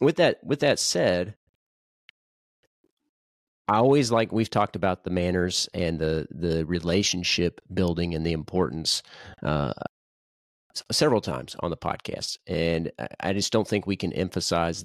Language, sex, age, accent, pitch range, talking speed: English, male, 40-59, American, 85-100 Hz, 140 wpm